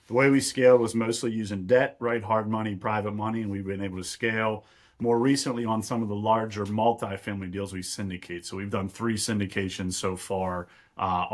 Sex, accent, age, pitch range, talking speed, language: male, American, 40-59, 100-120 Hz, 200 wpm, English